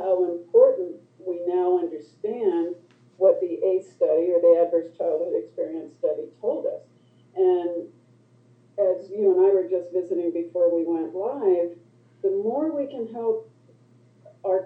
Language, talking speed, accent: English, 145 wpm, American